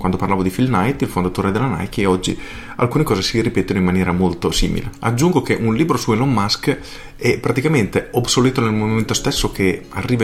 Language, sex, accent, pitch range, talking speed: Italian, male, native, 100-135 Hz, 200 wpm